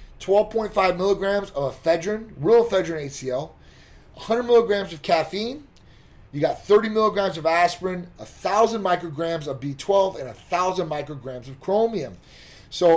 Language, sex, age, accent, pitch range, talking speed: English, male, 30-49, American, 145-195 Hz, 120 wpm